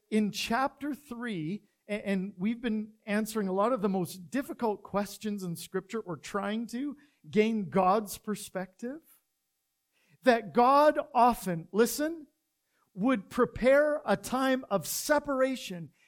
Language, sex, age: English, male, 50-69